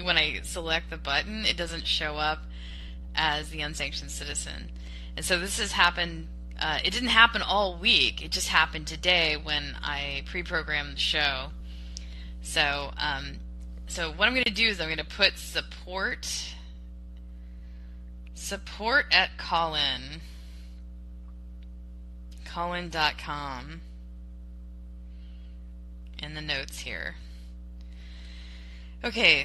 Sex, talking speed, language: female, 115 wpm, English